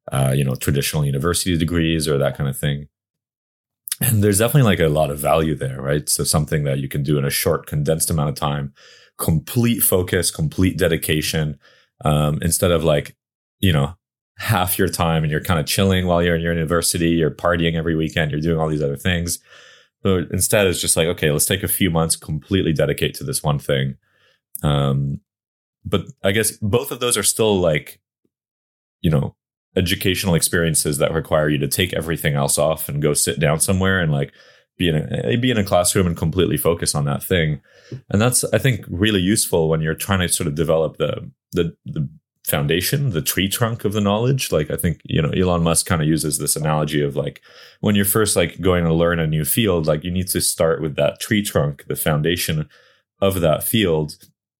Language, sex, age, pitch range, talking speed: English, male, 30-49, 75-95 Hz, 205 wpm